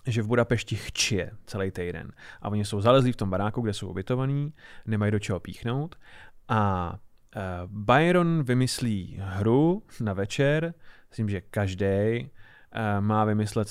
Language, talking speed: Czech, 135 wpm